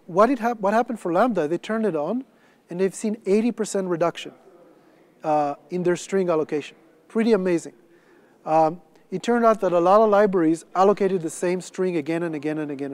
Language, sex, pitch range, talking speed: English, male, 160-190 Hz, 190 wpm